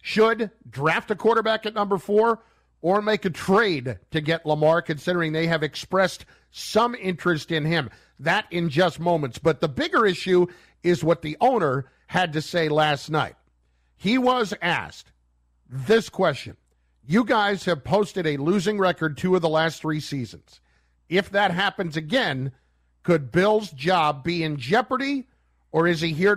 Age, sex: 50-69, male